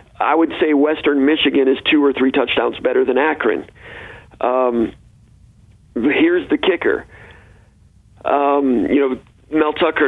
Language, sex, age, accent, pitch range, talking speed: English, male, 50-69, American, 135-160 Hz, 130 wpm